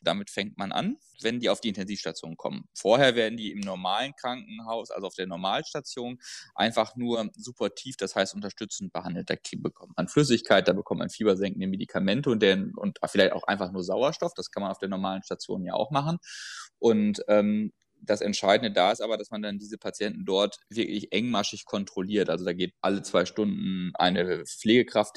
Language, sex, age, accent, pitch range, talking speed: German, male, 20-39, German, 95-120 Hz, 185 wpm